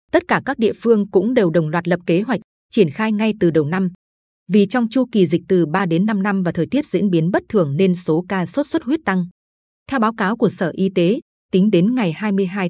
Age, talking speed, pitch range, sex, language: 20-39, 250 wpm, 180-225 Hz, female, Vietnamese